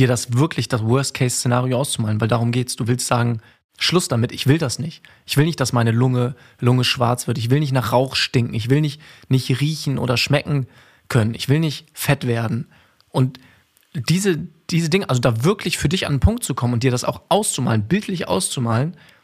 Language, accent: German, German